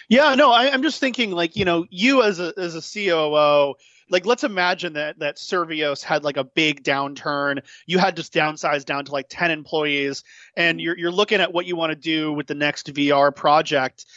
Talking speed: 210 wpm